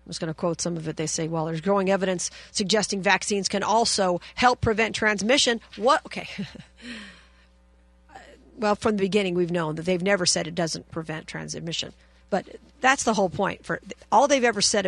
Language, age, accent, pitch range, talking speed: English, 50-69, American, 170-220 Hz, 190 wpm